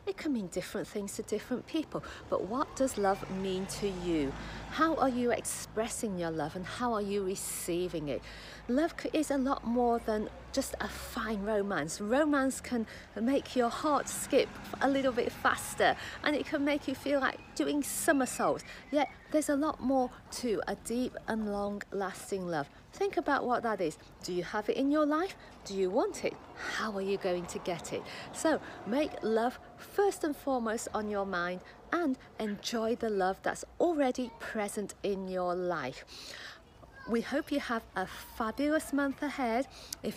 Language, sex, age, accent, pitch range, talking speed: English, female, 40-59, British, 195-270 Hz, 175 wpm